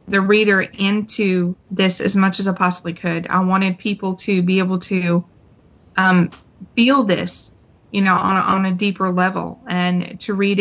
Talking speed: 170 wpm